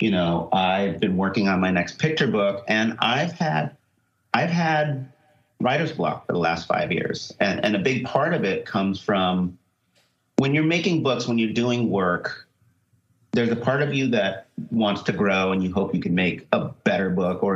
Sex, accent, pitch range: male, American, 105-130 Hz